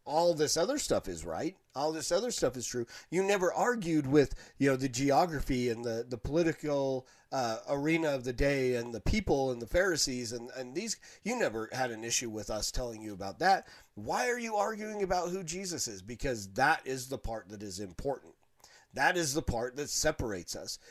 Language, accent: English, American